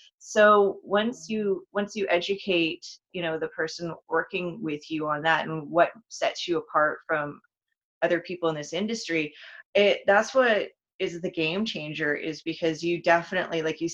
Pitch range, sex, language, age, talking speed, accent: 160-210 Hz, female, English, 30-49, 170 wpm, American